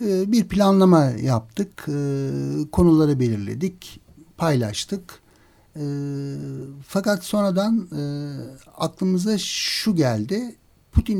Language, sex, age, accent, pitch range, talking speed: Turkish, male, 60-79, native, 125-170 Hz, 65 wpm